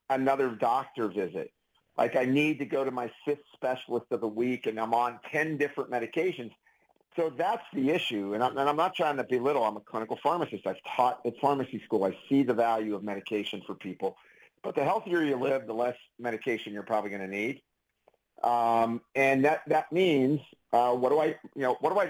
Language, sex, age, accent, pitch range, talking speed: English, male, 50-69, American, 115-145 Hz, 210 wpm